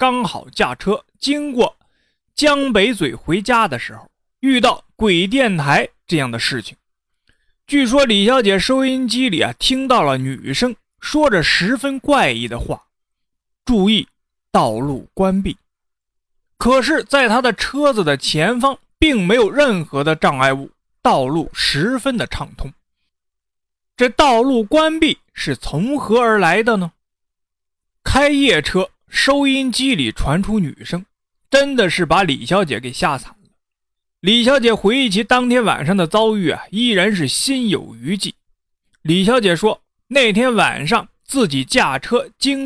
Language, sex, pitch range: Chinese, male, 175-265 Hz